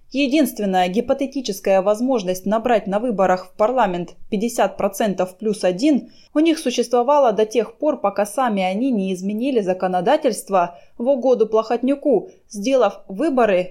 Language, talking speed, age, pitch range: Russian, 125 wpm, 20-39, 185-255 Hz